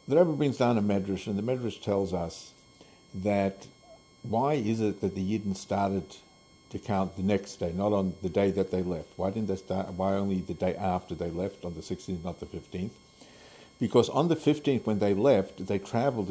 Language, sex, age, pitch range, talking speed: English, male, 60-79, 95-110 Hz, 210 wpm